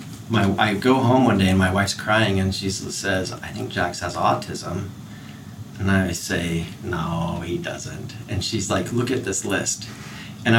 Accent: American